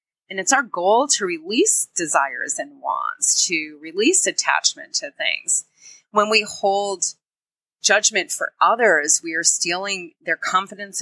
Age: 30-49